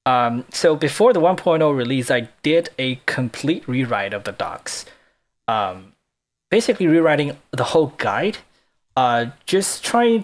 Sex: male